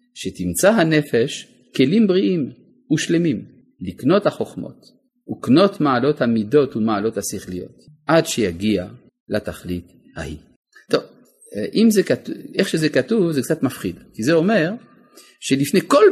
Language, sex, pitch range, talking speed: Hebrew, male, 105-160 Hz, 110 wpm